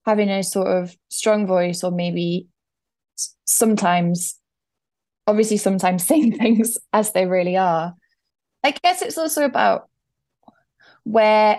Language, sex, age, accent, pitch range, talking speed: English, female, 10-29, British, 170-200 Hz, 120 wpm